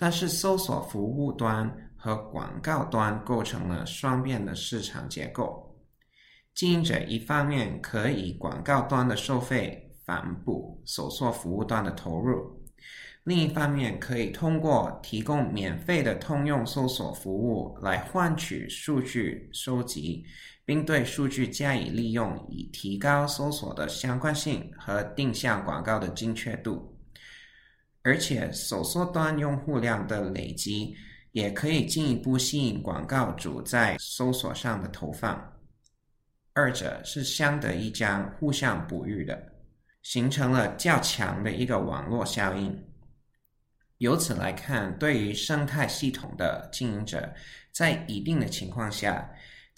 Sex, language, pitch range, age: male, Chinese, 105-145 Hz, 20-39